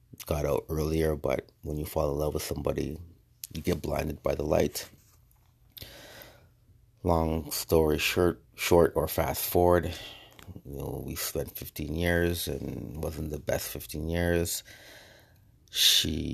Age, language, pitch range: 30-49, English, 75-95 Hz